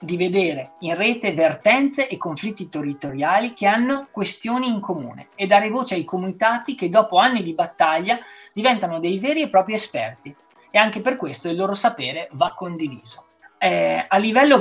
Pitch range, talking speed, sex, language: 150-215 Hz, 170 wpm, male, Italian